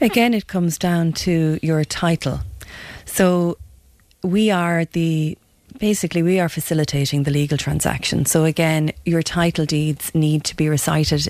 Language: English